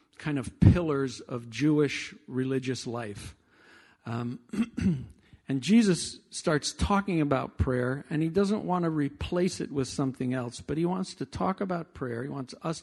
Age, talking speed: 50-69, 160 wpm